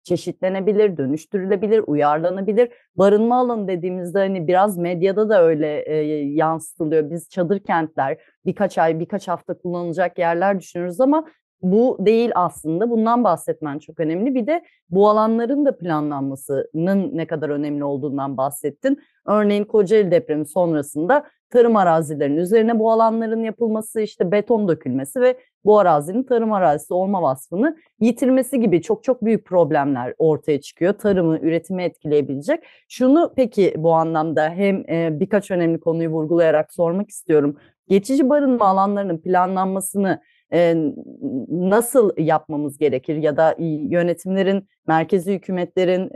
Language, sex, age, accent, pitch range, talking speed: Turkish, female, 30-49, native, 160-215 Hz, 125 wpm